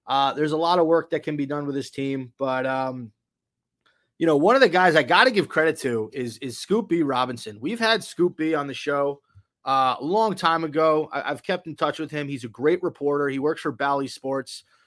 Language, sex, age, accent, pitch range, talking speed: English, male, 20-39, American, 140-180 Hz, 230 wpm